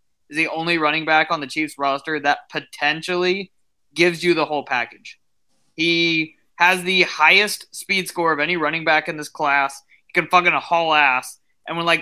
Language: English